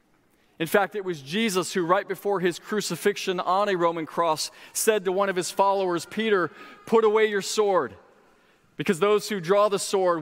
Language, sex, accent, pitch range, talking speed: English, male, American, 180-215 Hz, 180 wpm